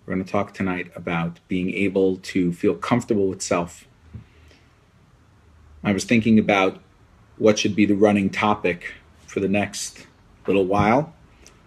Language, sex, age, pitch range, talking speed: English, male, 40-59, 90-110 Hz, 140 wpm